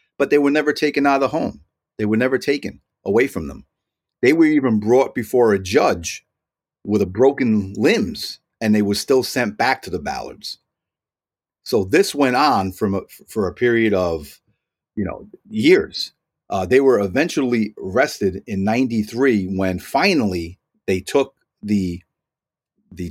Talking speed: 160 wpm